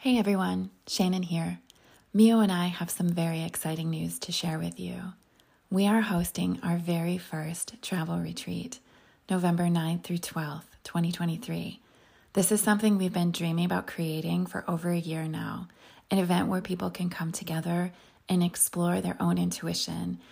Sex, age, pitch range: female, 20-39, 160-185 Hz